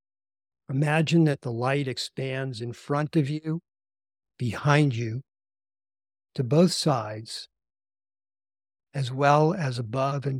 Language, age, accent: English, 60-79, American